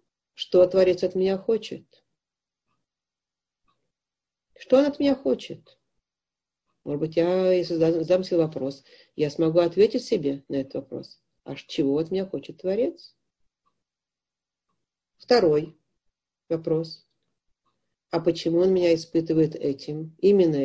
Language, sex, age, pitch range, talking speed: Russian, female, 50-69, 145-175 Hz, 110 wpm